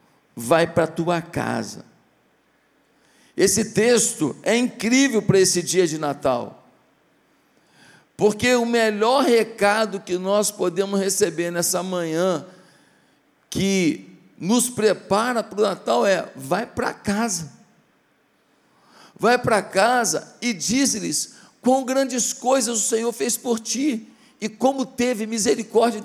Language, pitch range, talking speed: Portuguese, 195-250 Hz, 120 wpm